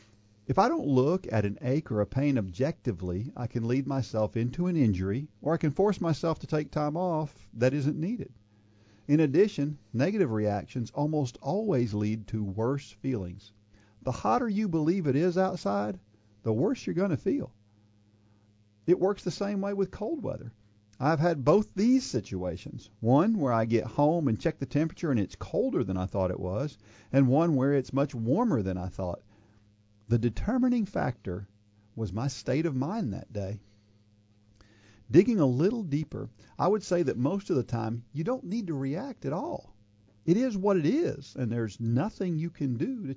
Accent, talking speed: American, 185 wpm